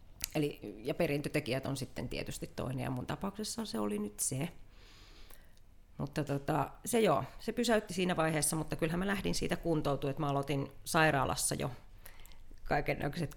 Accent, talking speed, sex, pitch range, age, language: native, 155 wpm, female, 125-165 Hz, 30-49, Finnish